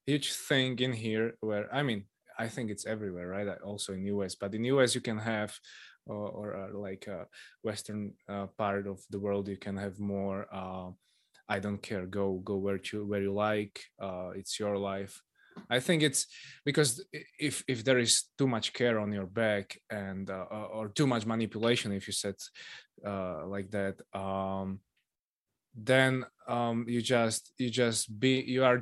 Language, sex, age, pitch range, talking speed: Slovak, male, 20-39, 100-125 Hz, 180 wpm